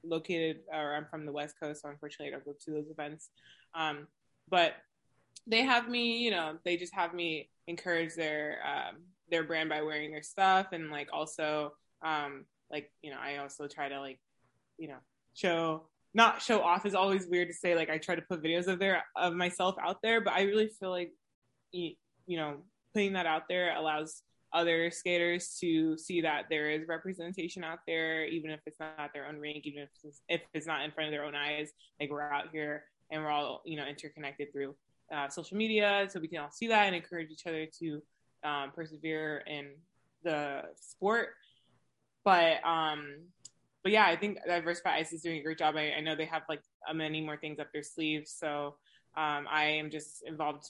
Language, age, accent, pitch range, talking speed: English, 20-39, American, 150-175 Hz, 205 wpm